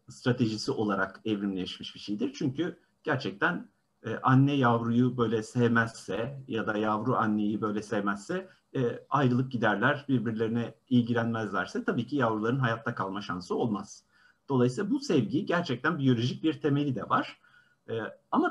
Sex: male